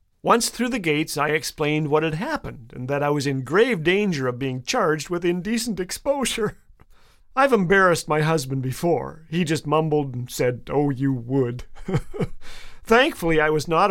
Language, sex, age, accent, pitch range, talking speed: English, male, 40-59, American, 145-190 Hz, 170 wpm